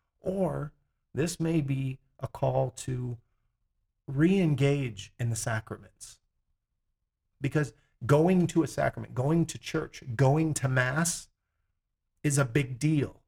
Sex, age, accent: male, 40-59, American